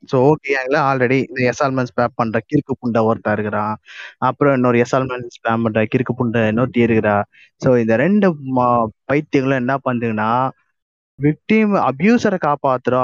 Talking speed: 110 wpm